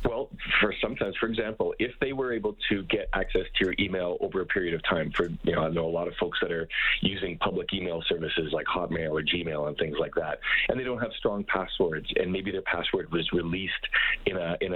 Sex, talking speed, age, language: male, 235 wpm, 40-59, English